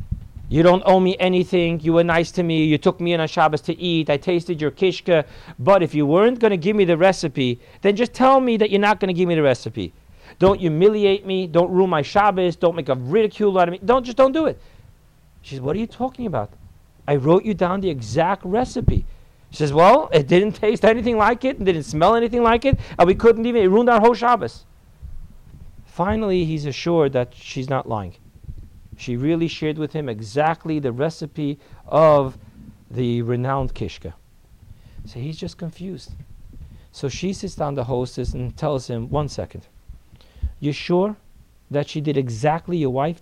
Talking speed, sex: 195 wpm, male